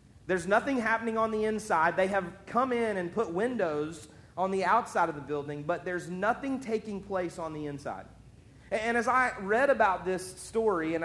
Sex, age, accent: male, 40-59, American